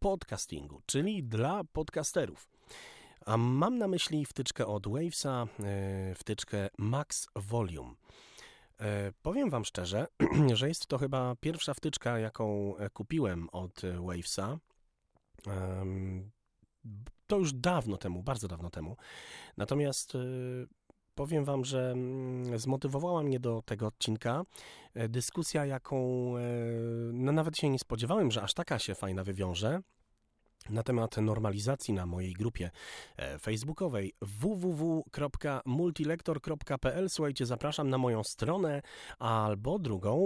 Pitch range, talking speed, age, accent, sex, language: 105-140 Hz, 115 wpm, 30-49, native, male, Polish